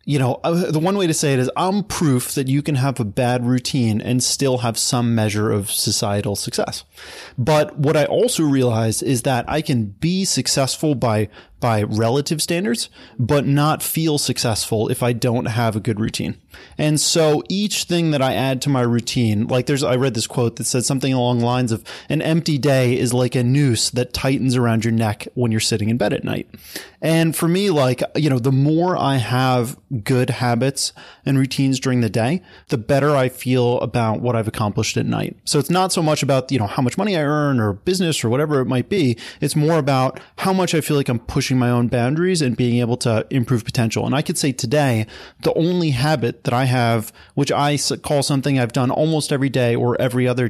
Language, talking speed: English, 215 wpm